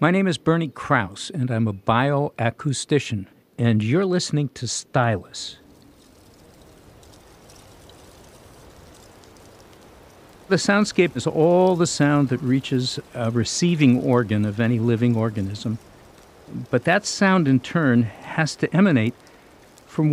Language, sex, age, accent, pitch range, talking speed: English, male, 50-69, American, 110-150 Hz, 115 wpm